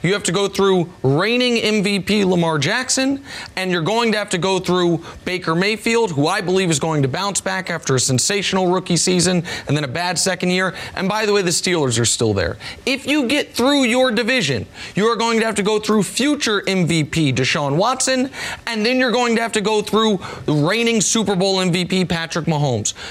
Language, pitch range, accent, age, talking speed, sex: English, 170-225 Hz, American, 30-49, 210 wpm, male